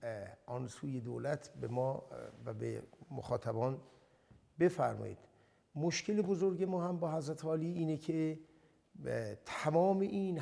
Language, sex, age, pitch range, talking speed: Persian, male, 60-79, 125-160 Hz, 110 wpm